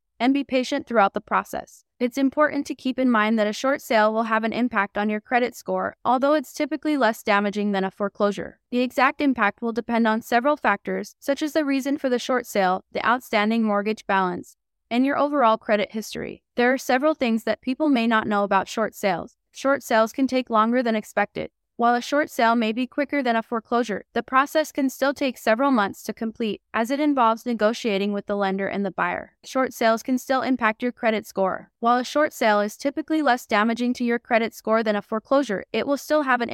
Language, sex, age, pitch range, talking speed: English, female, 20-39, 215-265 Hz, 220 wpm